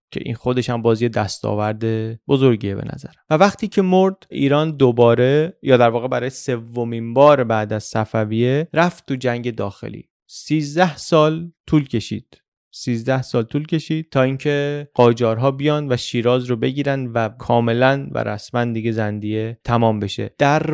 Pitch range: 115-135 Hz